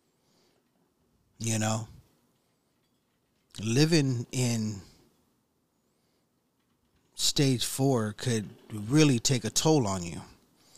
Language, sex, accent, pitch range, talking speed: English, male, American, 105-130 Hz, 70 wpm